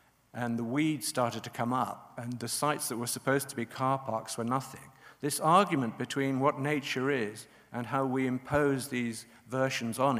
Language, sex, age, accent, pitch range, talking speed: English, male, 50-69, British, 120-150 Hz, 190 wpm